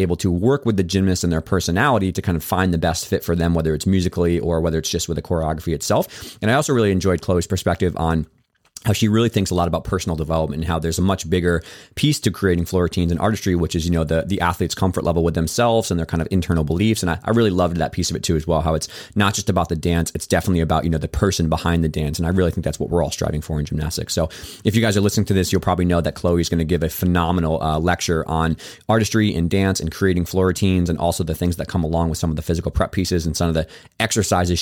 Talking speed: 285 wpm